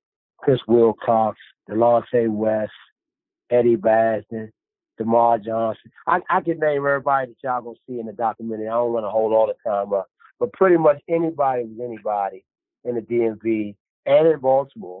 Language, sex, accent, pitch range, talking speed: English, male, American, 105-125 Hz, 165 wpm